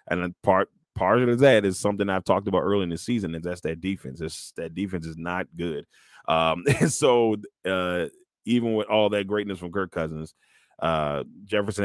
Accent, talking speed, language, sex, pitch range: American, 195 wpm, English, male, 80-100 Hz